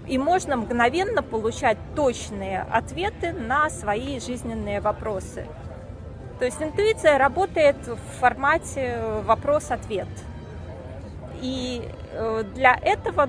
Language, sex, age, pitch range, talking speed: Russian, female, 20-39, 190-265 Hz, 90 wpm